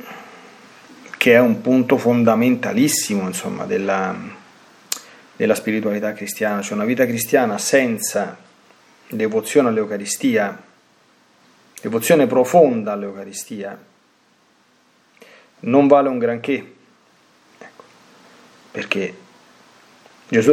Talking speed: 80 wpm